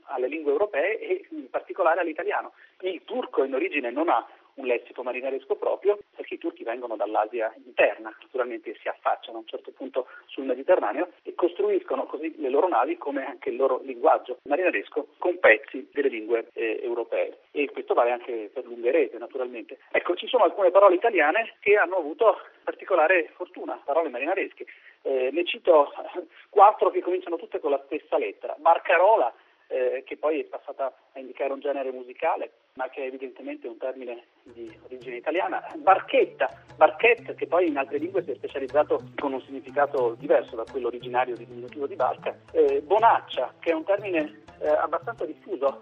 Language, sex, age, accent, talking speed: Italian, male, 40-59, native, 175 wpm